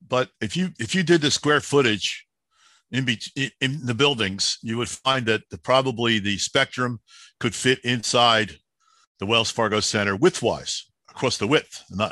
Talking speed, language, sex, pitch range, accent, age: 170 wpm, English, male, 95-125 Hz, American, 50-69